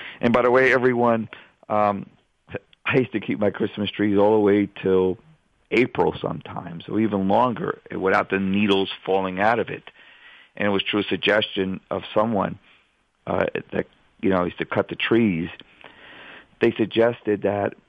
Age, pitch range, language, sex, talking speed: 50-69, 95-115 Hz, English, male, 165 wpm